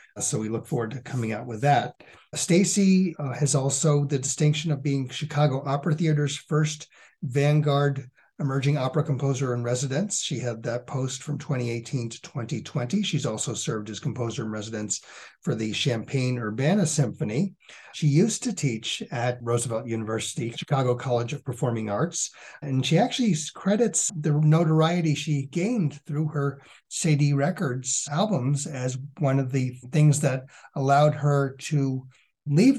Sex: male